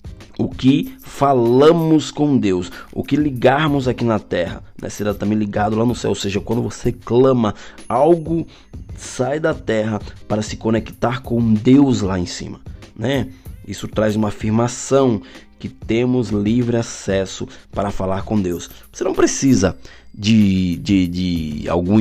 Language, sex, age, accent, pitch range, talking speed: Portuguese, male, 20-39, Brazilian, 95-130 Hz, 150 wpm